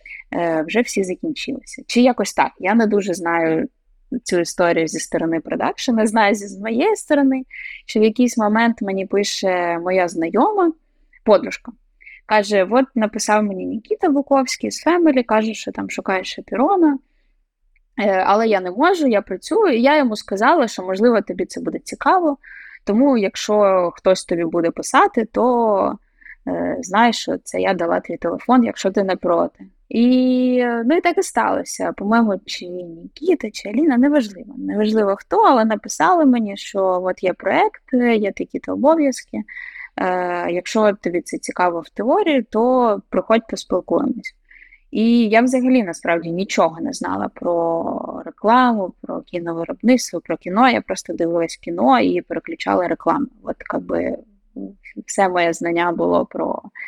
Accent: native